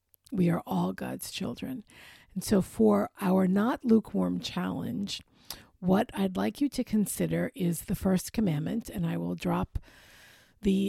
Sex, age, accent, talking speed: female, 50-69, American, 150 wpm